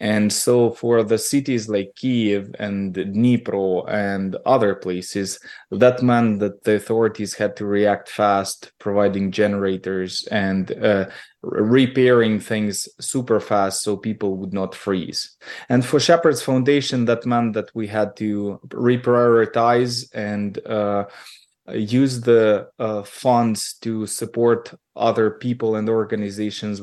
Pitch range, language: 105-125 Hz, English